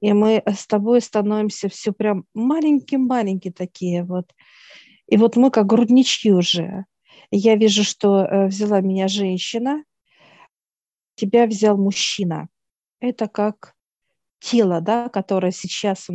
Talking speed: 120 wpm